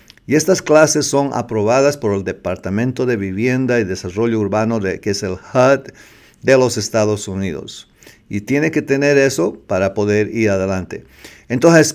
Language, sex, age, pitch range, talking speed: English, male, 50-69, 105-130 Hz, 160 wpm